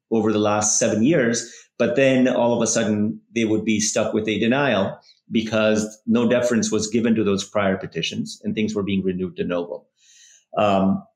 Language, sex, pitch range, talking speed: English, male, 105-125 Hz, 190 wpm